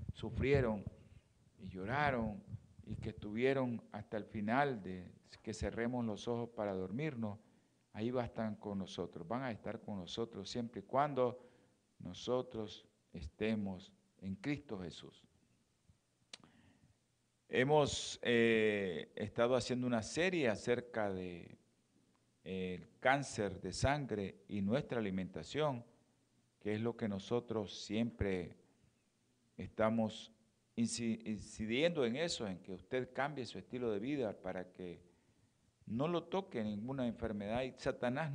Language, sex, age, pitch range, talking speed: Spanish, male, 50-69, 100-120 Hz, 120 wpm